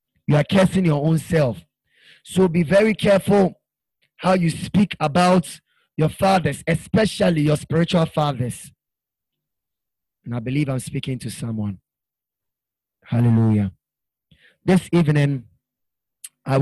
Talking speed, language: 110 wpm, English